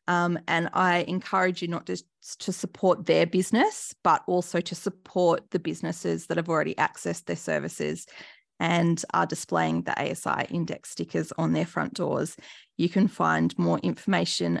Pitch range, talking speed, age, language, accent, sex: 170-225 Hz, 160 wpm, 20-39, English, Australian, female